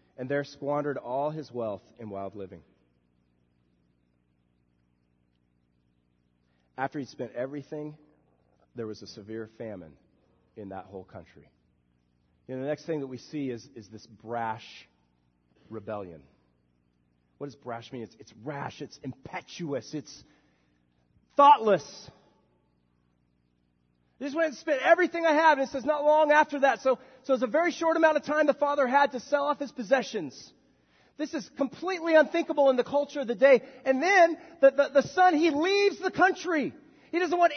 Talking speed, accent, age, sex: 160 wpm, American, 40-59, male